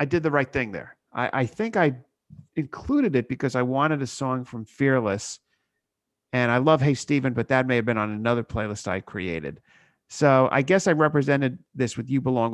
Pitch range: 115-140 Hz